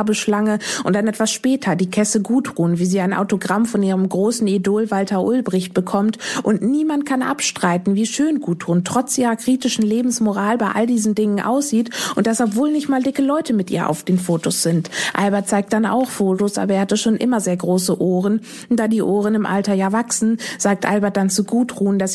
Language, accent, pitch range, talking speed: German, German, 185-225 Hz, 200 wpm